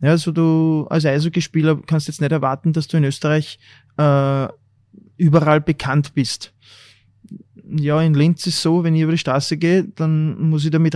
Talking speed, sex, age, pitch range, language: 175 wpm, male, 20-39, 130-150 Hz, German